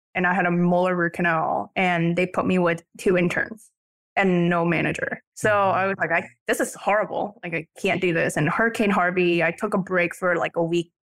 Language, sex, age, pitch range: English, female, 20-39, 180-200 Hz